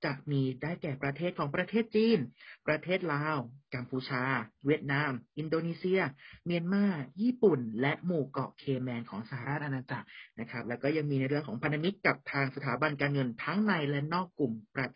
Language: Thai